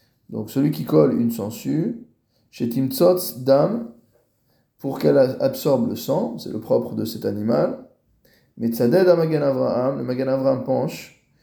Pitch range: 115-140 Hz